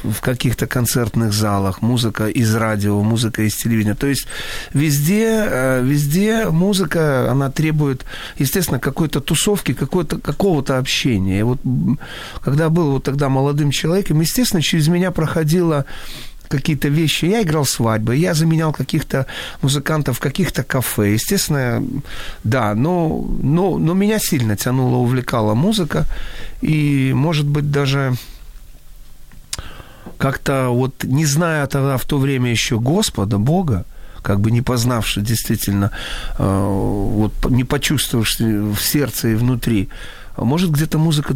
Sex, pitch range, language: male, 115-155 Hz, Ukrainian